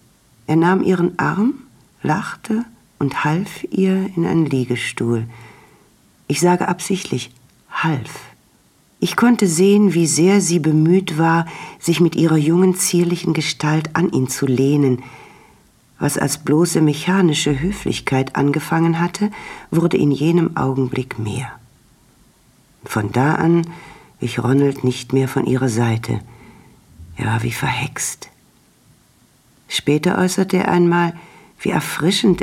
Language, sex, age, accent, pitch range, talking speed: German, female, 50-69, German, 125-170 Hz, 120 wpm